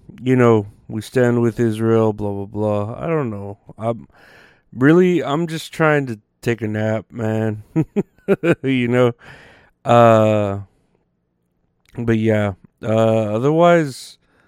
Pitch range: 105-125 Hz